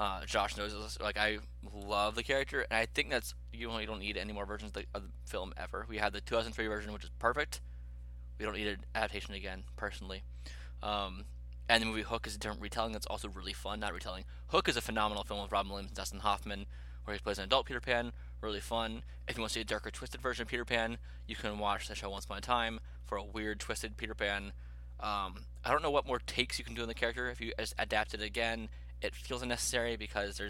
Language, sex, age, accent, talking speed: English, male, 20-39, American, 250 wpm